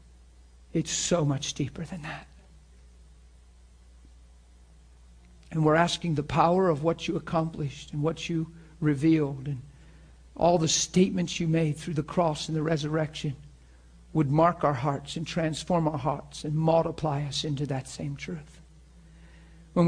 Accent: American